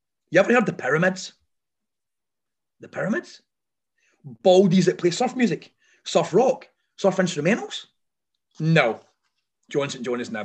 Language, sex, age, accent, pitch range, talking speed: English, male, 30-49, British, 170-230 Hz, 120 wpm